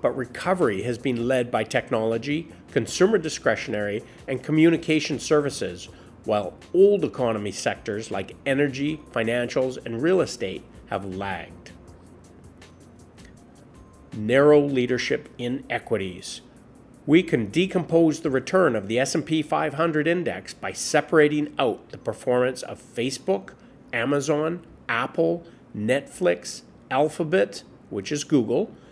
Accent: American